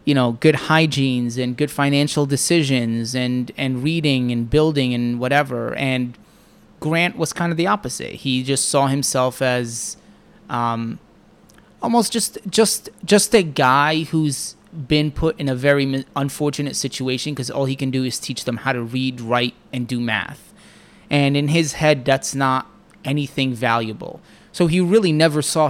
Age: 30-49